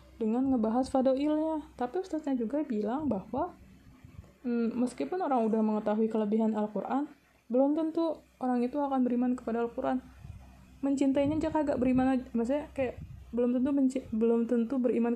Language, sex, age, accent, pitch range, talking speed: Indonesian, female, 20-39, native, 220-255 Hz, 145 wpm